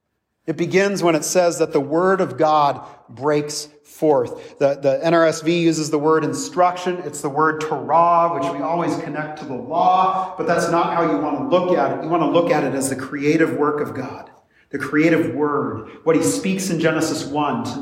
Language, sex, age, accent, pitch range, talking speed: English, male, 40-59, American, 150-180 Hz, 210 wpm